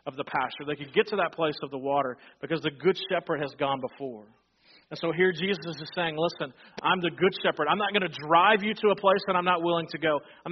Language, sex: English, male